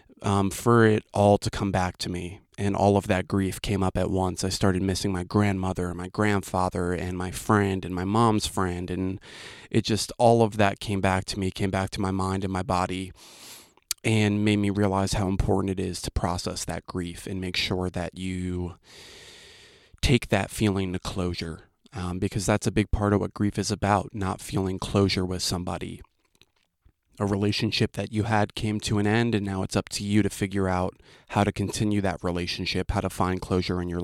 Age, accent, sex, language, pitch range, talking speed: 20-39, American, male, English, 95-110 Hz, 210 wpm